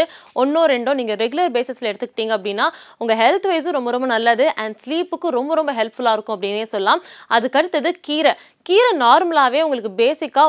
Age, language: 20-39, Tamil